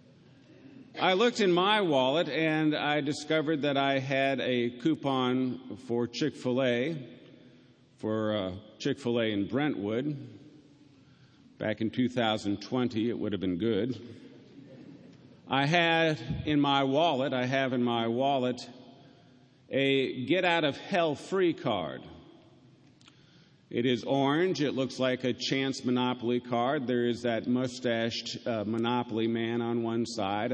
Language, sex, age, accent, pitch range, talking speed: English, male, 50-69, American, 110-140 Hz, 120 wpm